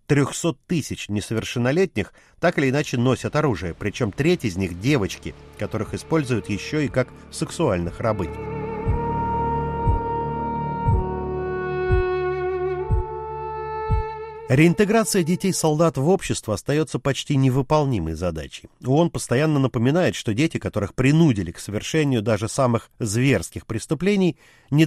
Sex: male